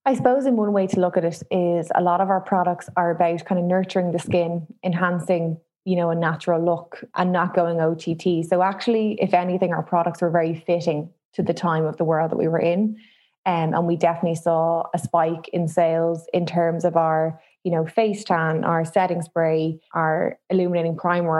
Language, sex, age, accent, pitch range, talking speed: English, female, 20-39, Irish, 165-185 Hz, 210 wpm